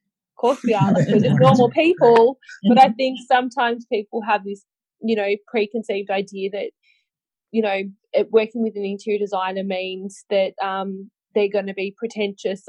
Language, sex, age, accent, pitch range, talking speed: English, female, 20-39, Australian, 190-220 Hz, 160 wpm